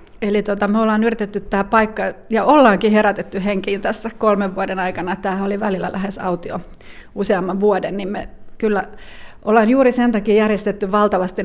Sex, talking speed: female, 160 wpm